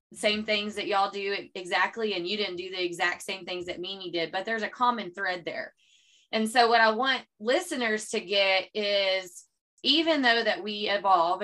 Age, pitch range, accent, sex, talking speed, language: 20-39, 175-220 Hz, American, female, 195 wpm, English